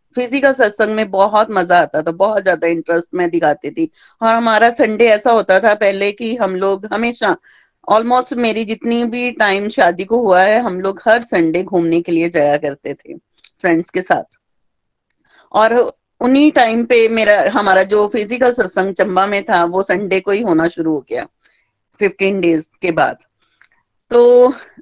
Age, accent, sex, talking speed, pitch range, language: 30-49, native, female, 170 wpm, 190-245 Hz, Hindi